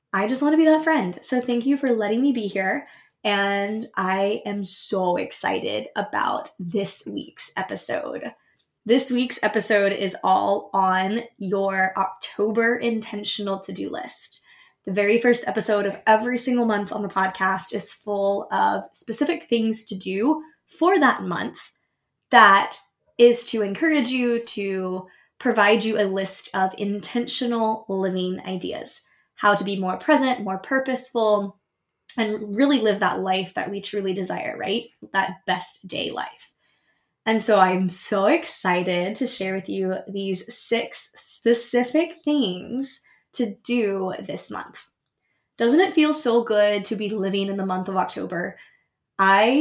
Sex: female